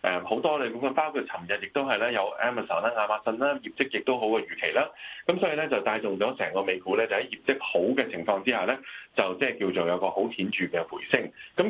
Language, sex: Chinese, male